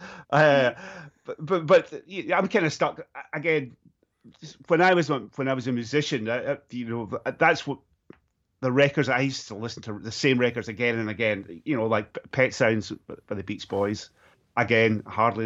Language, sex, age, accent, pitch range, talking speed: English, male, 30-49, British, 105-120 Hz, 180 wpm